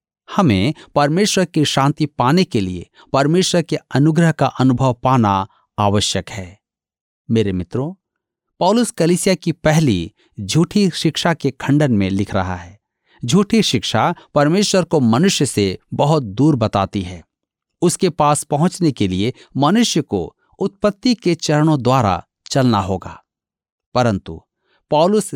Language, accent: Hindi, native